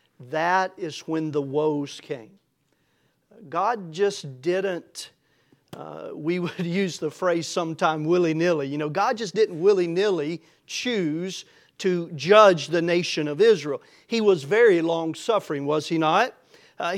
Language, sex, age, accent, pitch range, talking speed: English, male, 40-59, American, 160-195 Hz, 145 wpm